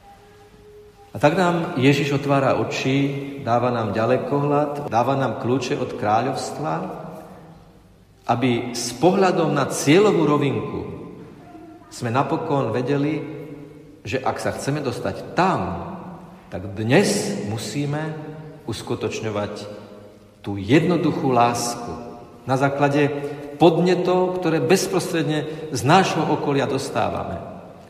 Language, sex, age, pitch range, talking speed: Slovak, male, 50-69, 115-175 Hz, 95 wpm